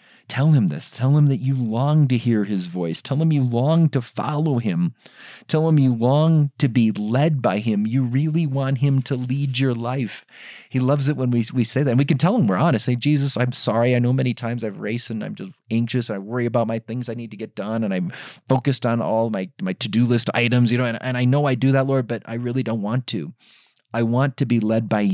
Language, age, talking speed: English, 30-49, 260 wpm